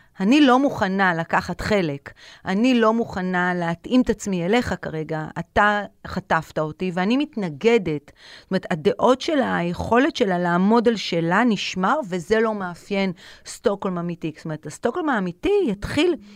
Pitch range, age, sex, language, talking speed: 180-245 Hz, 40-59, female, Hebrew, 140 wpm